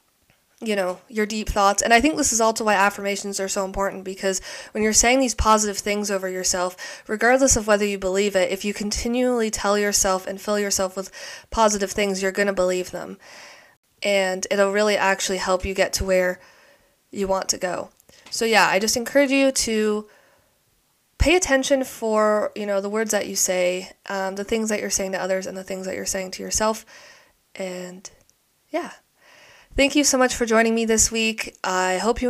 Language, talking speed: English, 200 wpm